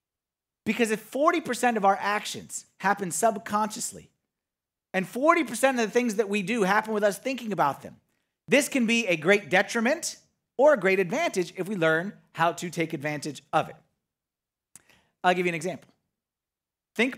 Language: English